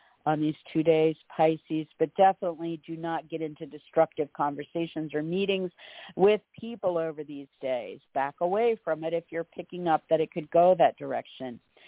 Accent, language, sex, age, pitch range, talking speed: American, English, female, 50-69, 160-185 Hz, 170 wpm